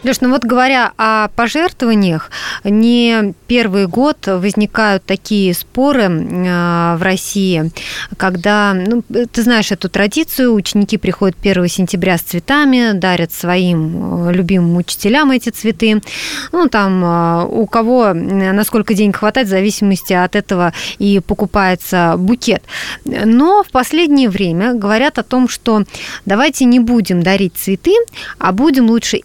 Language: Russian